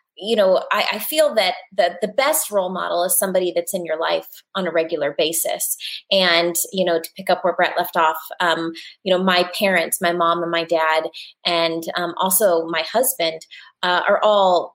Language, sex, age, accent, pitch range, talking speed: English, female, 20-39, American, 165-195 Hz, 200 wpm